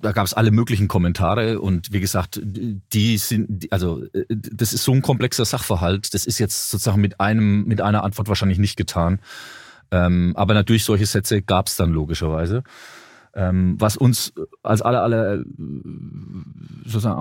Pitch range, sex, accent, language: 95-110 Hz, male, German, German